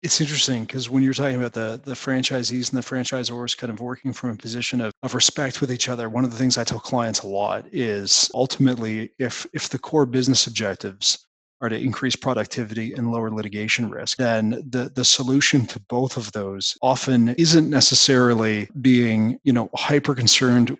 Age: 30-49